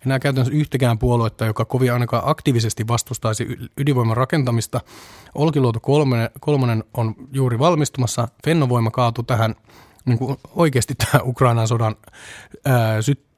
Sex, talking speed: male, 115 wpm